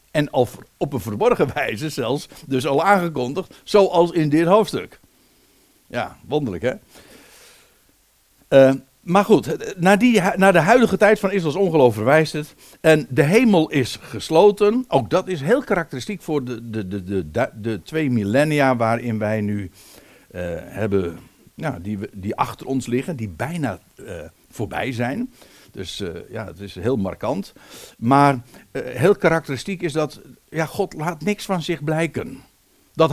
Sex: male